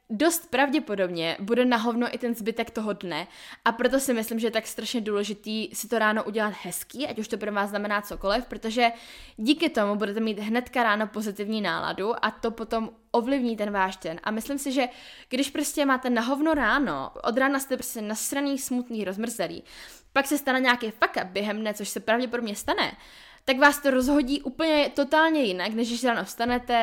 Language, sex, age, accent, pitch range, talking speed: Czech, female, 10-29, native, 210-255 Hz, 195 wpm